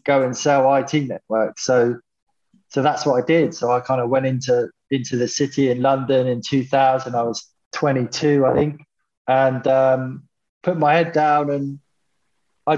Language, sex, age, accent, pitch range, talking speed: English, male, 20-39, British, 120-140 Hz, 175 wpm